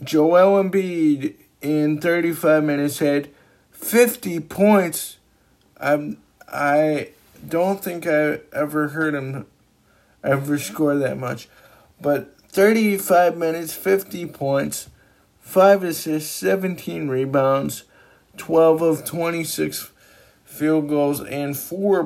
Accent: American